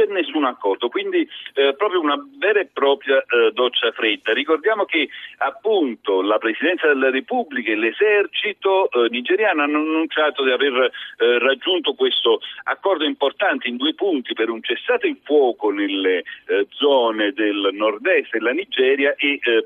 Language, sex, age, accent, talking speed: Italian, male, 50-69, native, 155 wpm